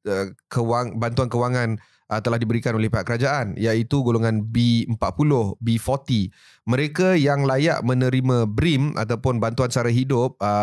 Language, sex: Malay, male